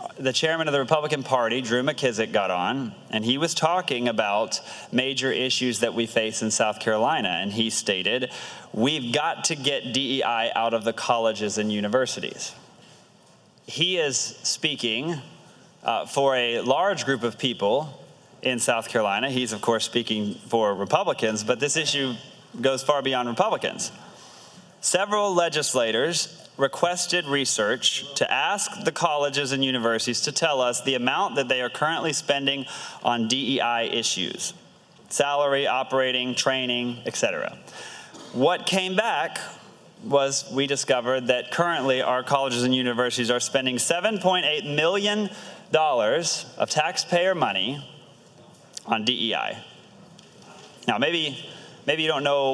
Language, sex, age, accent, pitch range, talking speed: English, male, 30-49, American, 120-150 Hz, 135 wpm